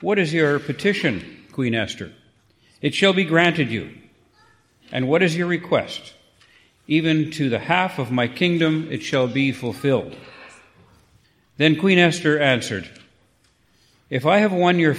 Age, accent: 50-69, American